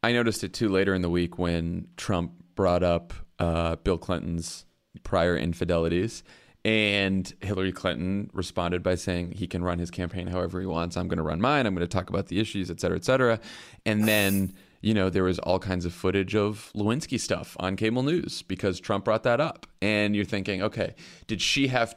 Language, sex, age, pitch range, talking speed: English, male, 30-49, 90-120 Hz, 205 wpm